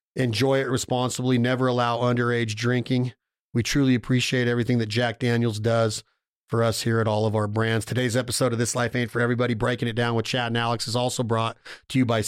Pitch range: 115-130 Hz